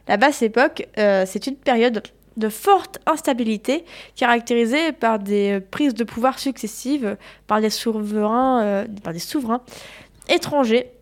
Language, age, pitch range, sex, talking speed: French, 20-39, 215-280 Hz, female, 140 wpm